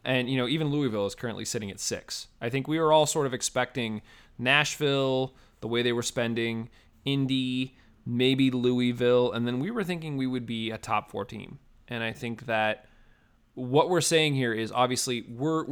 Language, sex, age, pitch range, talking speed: English, male, 20-39, 115-135 Hz, 185 wpm